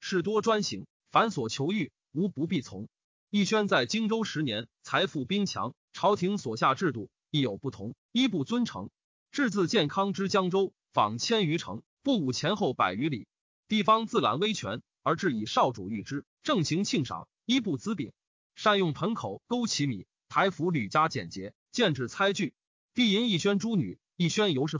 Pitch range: 150-215 Hz